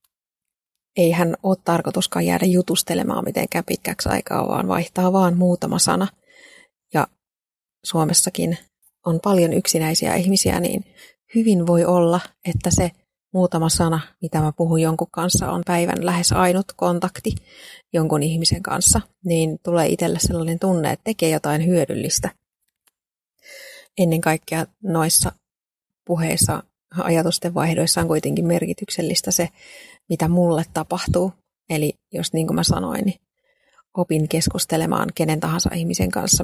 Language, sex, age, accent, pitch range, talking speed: Finnish, female, 30-49, native, 165-185 Hz, 125 wpm